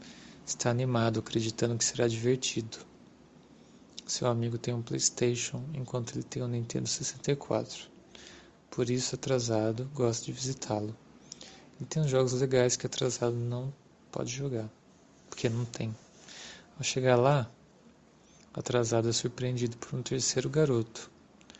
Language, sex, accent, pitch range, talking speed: Portuguese, male, Brazilian, 115-130 Hz, 125 wpm